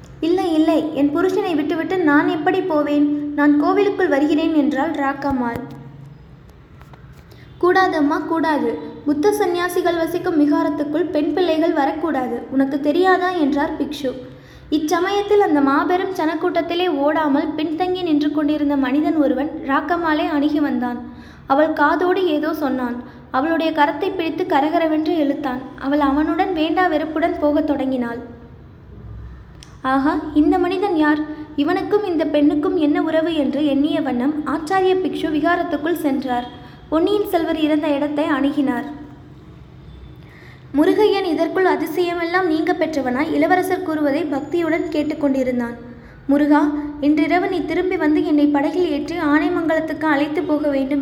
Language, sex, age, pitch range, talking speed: Tamil, female, 20-39, 285-340 Hz, 115 wpm